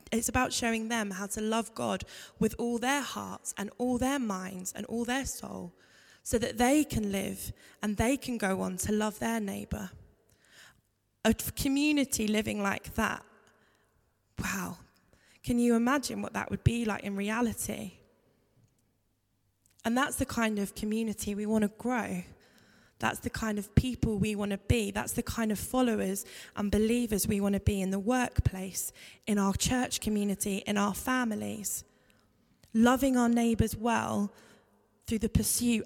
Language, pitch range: English, 200-235 Hz